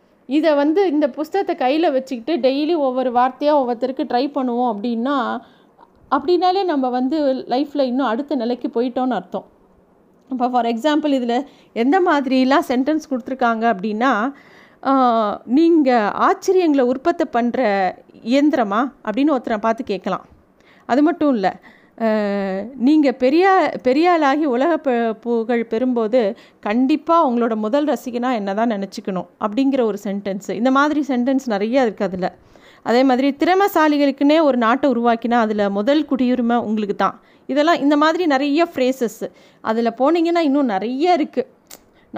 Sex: female